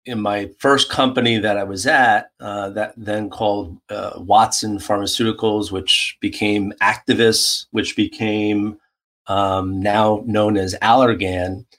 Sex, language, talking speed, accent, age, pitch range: male, English, 125 wpm, American, 40-59, 100-120 Hz